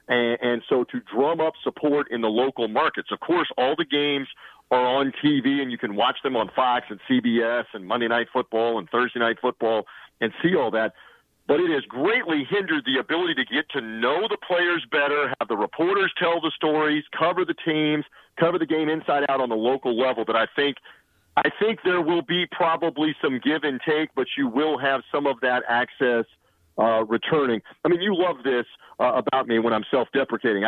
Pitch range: 130-180 Hz